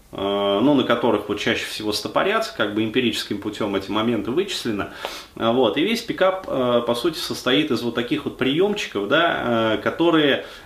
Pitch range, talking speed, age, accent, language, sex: 105-135 Hz, 160 wpm, 20-39, native, Russian, male